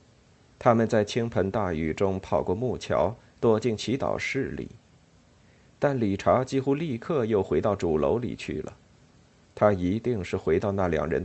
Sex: male